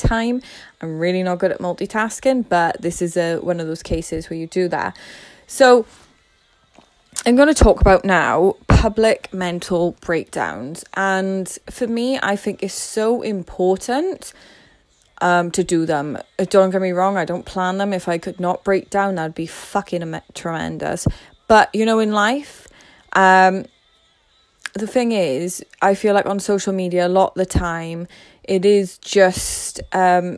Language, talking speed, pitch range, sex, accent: English, 165 wpm, 175-225 Hz, female, British